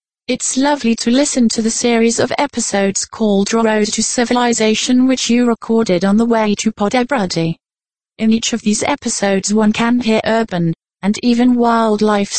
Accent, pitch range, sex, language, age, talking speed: British, 205-240 Hz, female, English, 30-49, 160 wpm